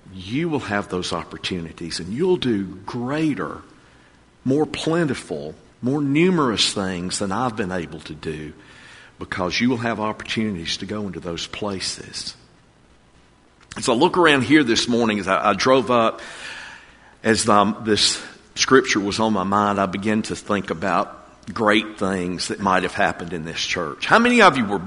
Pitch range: 95-140 Hz